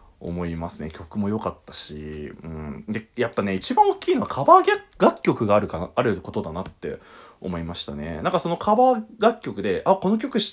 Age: 30-49